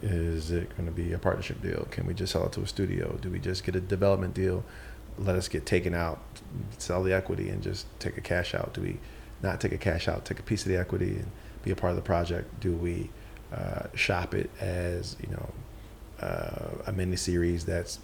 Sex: male